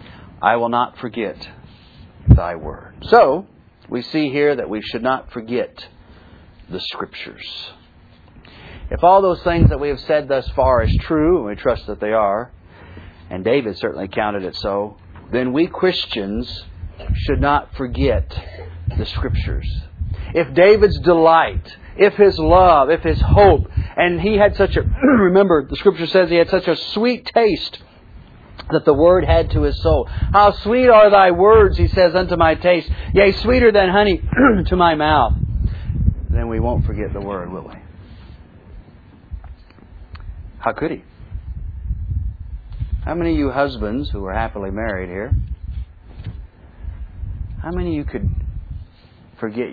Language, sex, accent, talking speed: English, male, American, 150 wpm